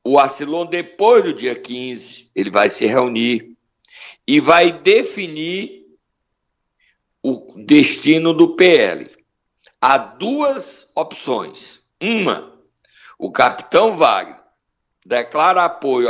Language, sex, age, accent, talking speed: Portuguese, male, 60-79, Brazilian, 95 wpm